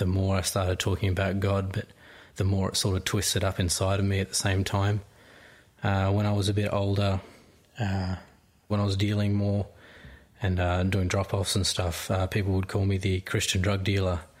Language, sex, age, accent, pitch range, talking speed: English, male, 20-39, Australian, 95-105 Hz, 210 wpm